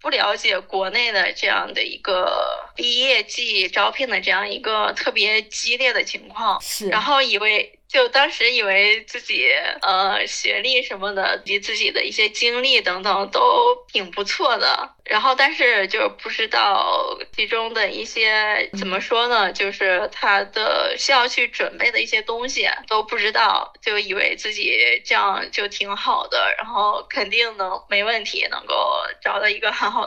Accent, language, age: native, Chinese, 20-39